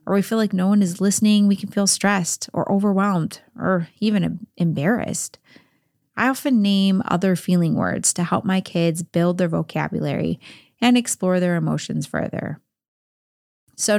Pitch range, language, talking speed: 175-215 Hz, English, 155 wpm